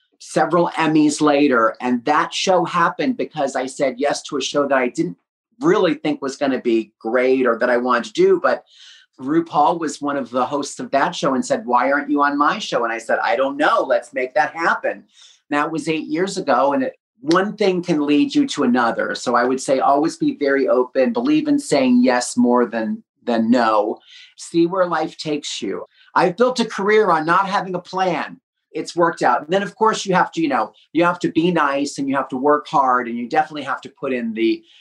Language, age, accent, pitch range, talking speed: English, 40-59, American, 130-190 Hz, 230 wpm